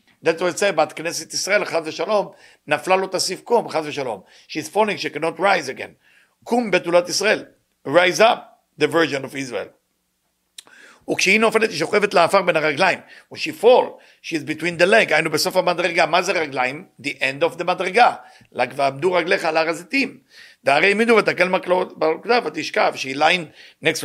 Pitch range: 155-200 Hz